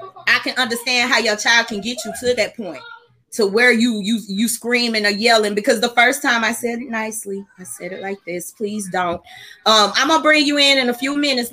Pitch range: 210-270 Hz